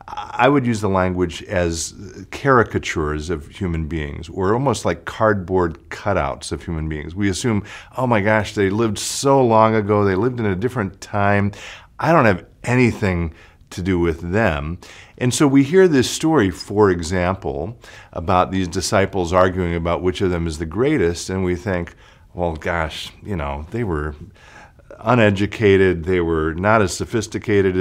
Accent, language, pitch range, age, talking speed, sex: American, English, 85-110 Hz, 50-69, 165 wpm, male